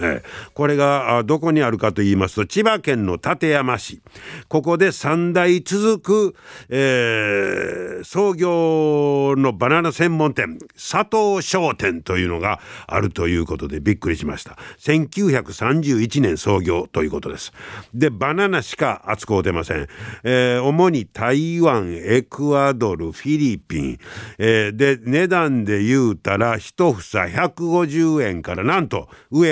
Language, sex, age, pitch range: Japanese, male, 50-69, 105-160 Hz